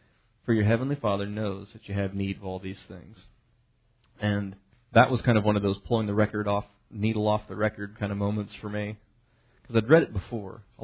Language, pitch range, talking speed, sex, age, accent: English, 105-120 Hz, 220 wpm, male, 30-49, American